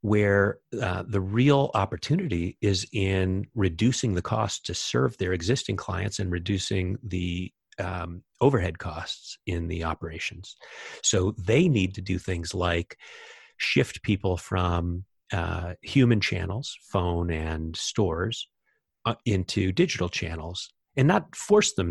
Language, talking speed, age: English, 130 wpm, 40-59